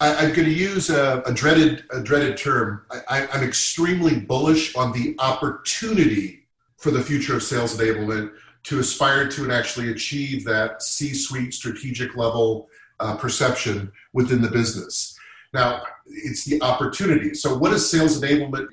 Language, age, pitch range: English, 40-59, 115-145 Hz